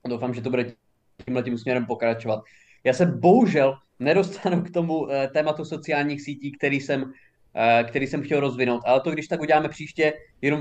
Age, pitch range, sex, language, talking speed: 20-39, 125-160 Hz, male, Czech, 165 wpm